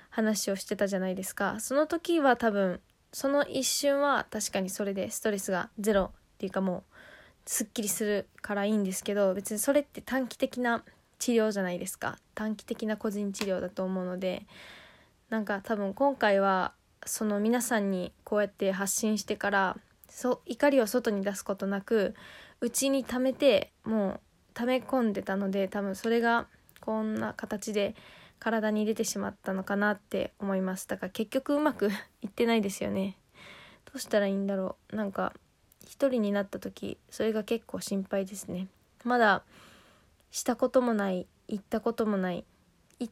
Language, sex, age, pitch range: Japanese, female, 20-39, 195-235 Hz